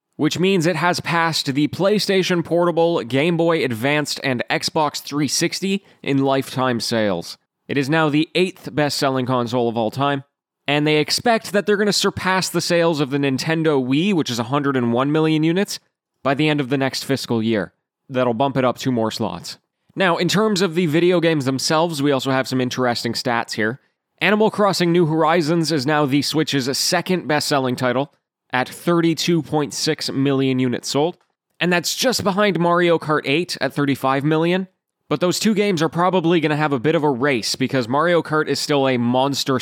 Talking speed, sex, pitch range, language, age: 185 wpm, male, 130-170 Hz, English, 20-39